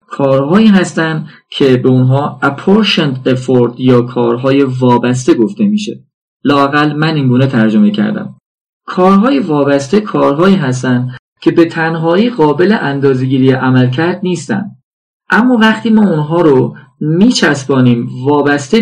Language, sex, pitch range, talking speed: Persian, male, 135-190 Hz, 115 wpm